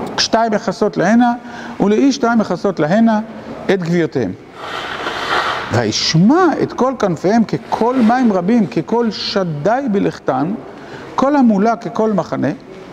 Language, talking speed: Hebrew, 100 wpm